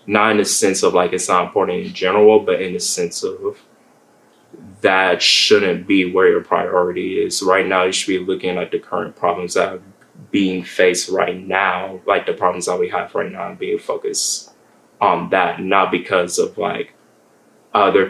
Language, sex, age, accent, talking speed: English, male, 20-39, American, 190 wpm